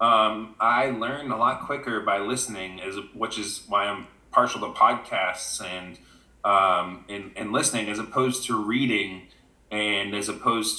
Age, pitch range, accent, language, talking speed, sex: 30-49, 100-125 Hz, American, English, 155 wpm, male